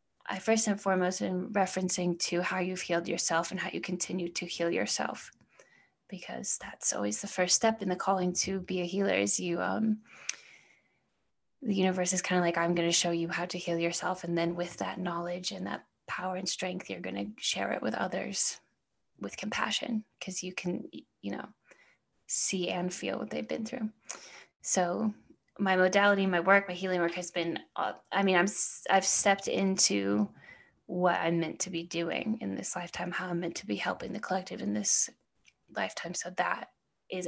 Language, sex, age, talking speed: English, female, 10-29, 195 wpm